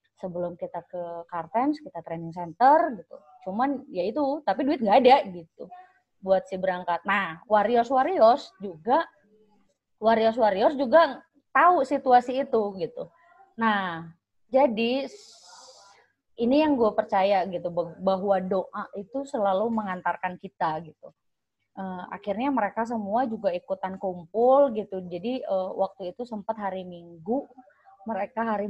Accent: native